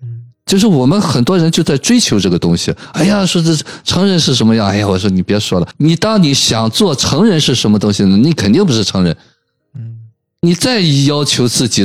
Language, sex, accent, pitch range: Chinese, male, native, 110-175 Hz